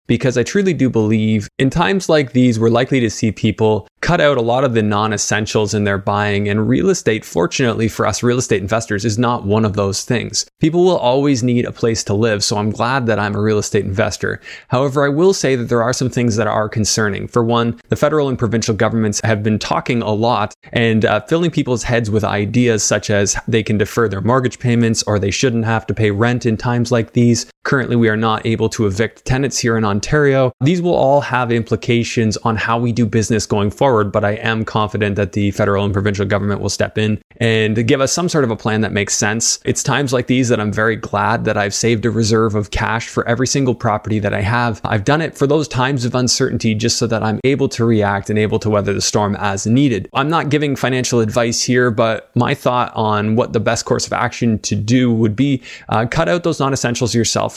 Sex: male